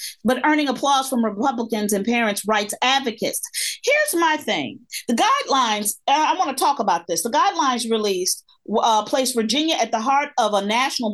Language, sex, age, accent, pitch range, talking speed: English, female, 40-59, American, 220-295 Hz, 175 wpm